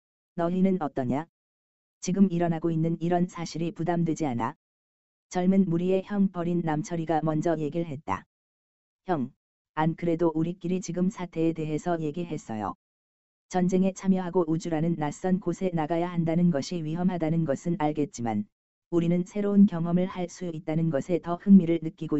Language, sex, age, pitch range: Korean, female, 20-39, 150-180 Hz